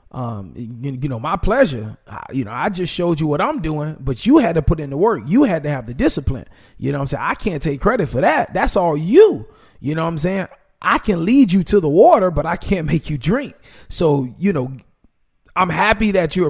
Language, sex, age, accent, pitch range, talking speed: English, male, 30-49, American, 145-205 Hz, 250 wpm